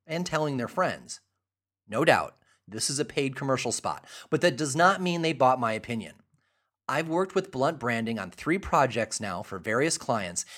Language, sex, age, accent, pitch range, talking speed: English, male, 30-49, American, 120-170 Hz, 185 wpm